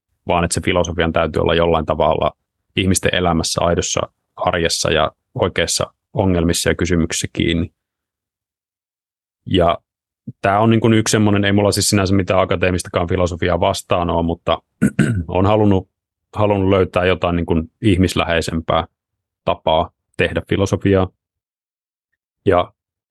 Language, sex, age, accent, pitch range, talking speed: Finnish, male, 30-49, native, 85-100 Hz, 120 wpm